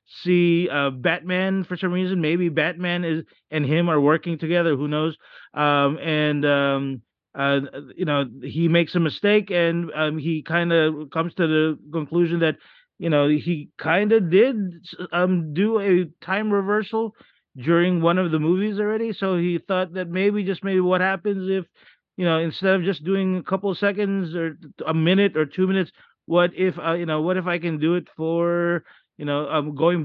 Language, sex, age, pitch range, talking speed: English, male, 30-49, 145-180 Hz, 190 wpm